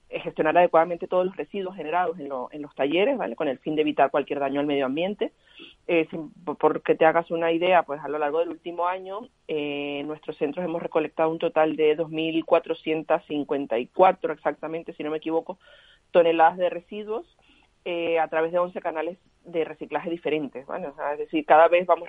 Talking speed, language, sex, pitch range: 190 wpm, Spanish, female, 155-185 Hz